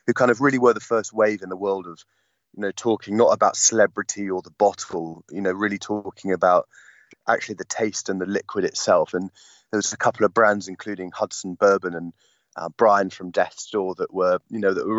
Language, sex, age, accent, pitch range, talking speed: English, male, 30-49, British, 95-115 Hz, 220 wpm